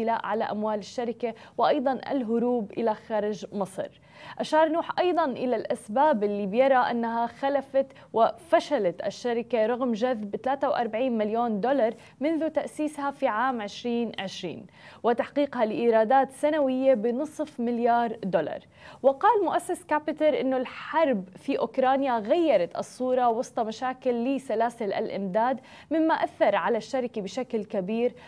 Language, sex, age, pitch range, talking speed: Arabic, female, 20-39, 220-275 Hz, 115 wpm